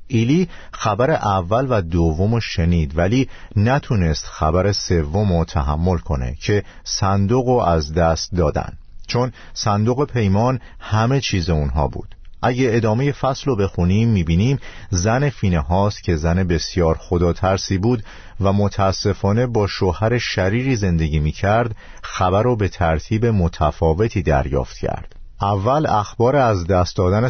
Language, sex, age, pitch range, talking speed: Persian, male, 50-69, 85-115 Hz, 130 wpm